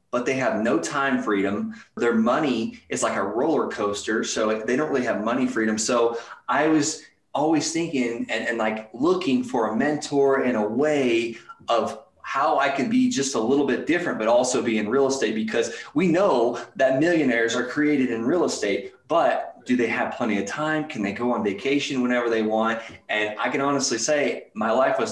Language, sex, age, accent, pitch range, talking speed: English, male, 20-39, American, 110-145 Hz, 200 wpm